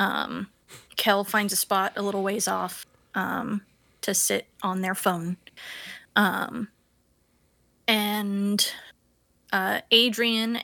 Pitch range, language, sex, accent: 195-225 Hz, English, female, American